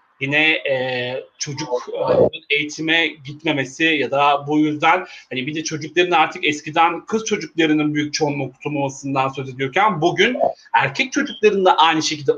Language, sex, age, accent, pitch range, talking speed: Turkish, male, 40-59, native, 150-190 Hz, 140 wpm